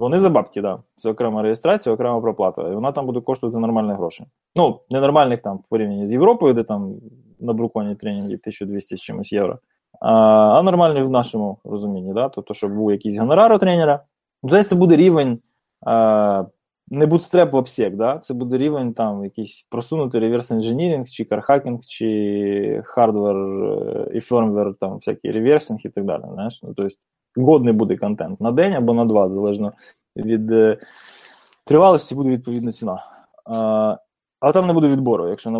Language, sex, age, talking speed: Ukrainian, male, 20-39, 170 wpm